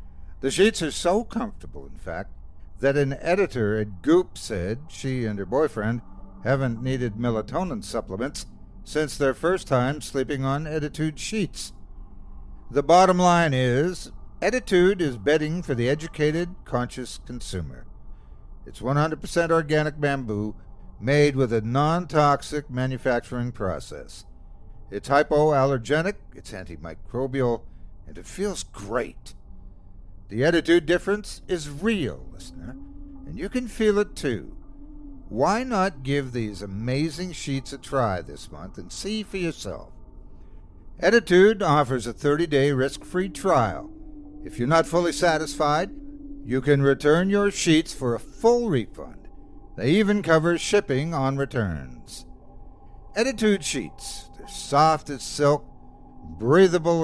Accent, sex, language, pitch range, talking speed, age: American, male, English, 110-170 Hz, 125 wpm, 60-79